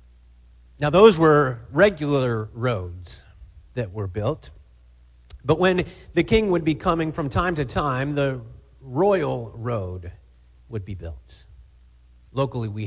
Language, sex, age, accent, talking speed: English, male, 40-59, American, 125 wpm